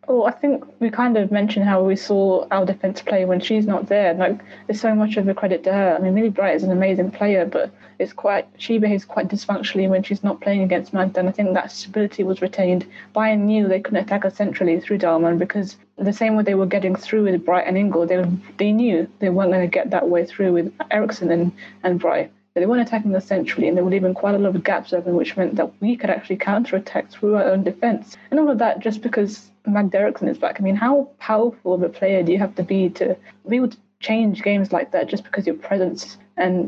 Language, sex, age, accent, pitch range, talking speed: English, female, 20-39, British, 185-210 Hz, 255 wpm